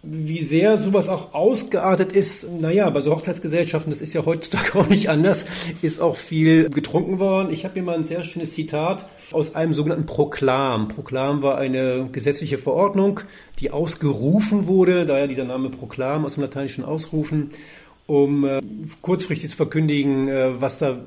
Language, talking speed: German, 170 wpm